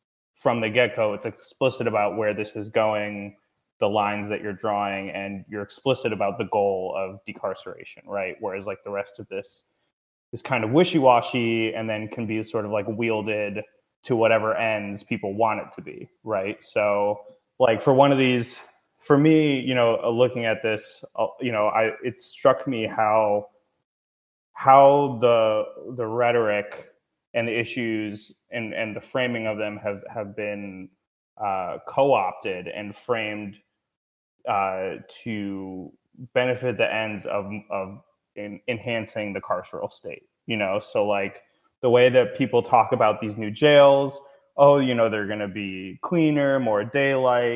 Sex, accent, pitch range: male, American, 105-130 Hz